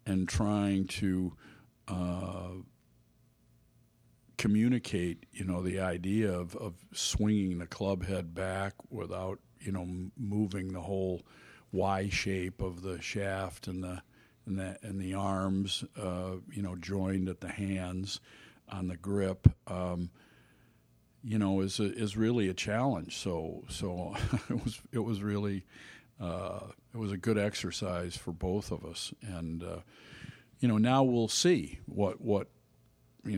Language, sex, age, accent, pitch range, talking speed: English, male, 50-69, American, 90-105 Hz, 145 wpm